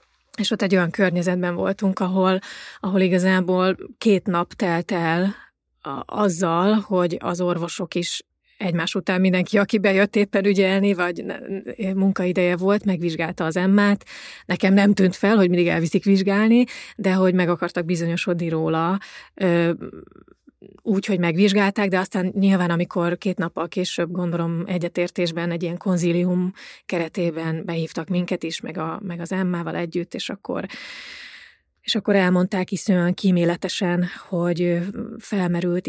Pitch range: 175-200 Hz